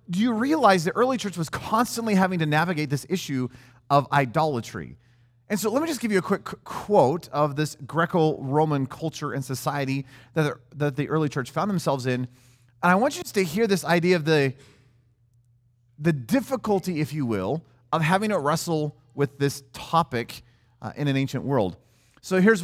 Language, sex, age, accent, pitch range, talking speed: English, male, 30-49, American, 125-160 Hz, 175 wpm